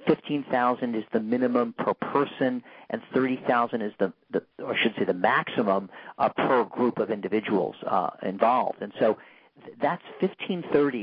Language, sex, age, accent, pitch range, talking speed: English, male, 50-69, American, 115-140 Hz, 160 wpm